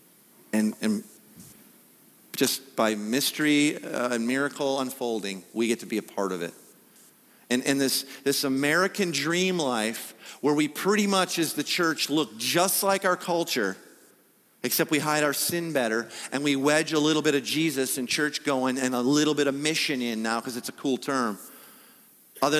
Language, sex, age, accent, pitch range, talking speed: English, male, 40-59, American, 115-145 Hz, 180 wpm